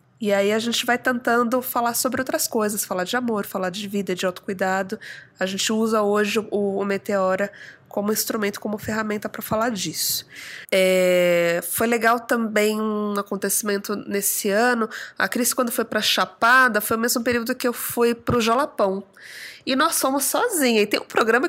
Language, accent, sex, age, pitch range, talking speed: Portuguese, Brazilian, female, 20-39, 200-230 Hz, 180 wpm